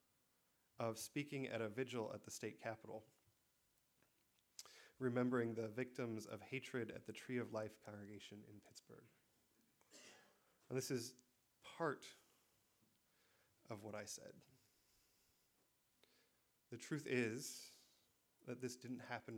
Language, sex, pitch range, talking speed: English, male, 110-125 Hz, 115 wpm